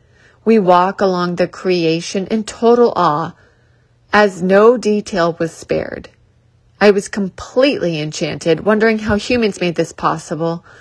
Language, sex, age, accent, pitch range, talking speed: English, female, 30-49, American, 160-215 Hz, 130 wpm